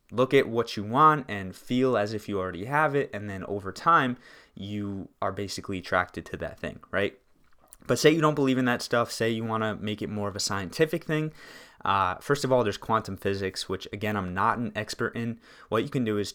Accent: American